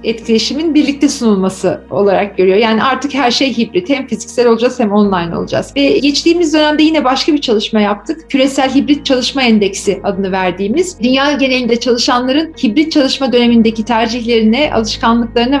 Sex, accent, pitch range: female, native, 235-305 Hz